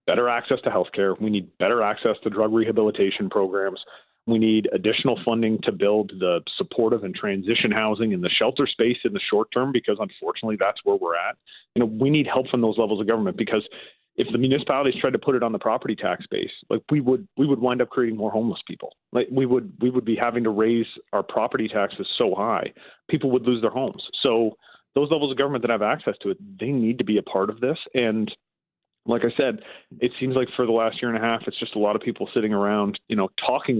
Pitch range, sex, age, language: 110-125 Hz, male, 40-59, English